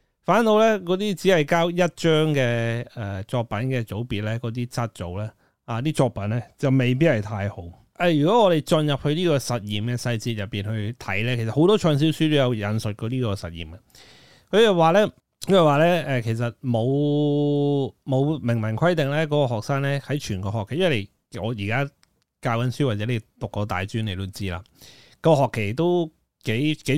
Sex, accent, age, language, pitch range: male, native, 30-49, Chinese, 105-145 Hz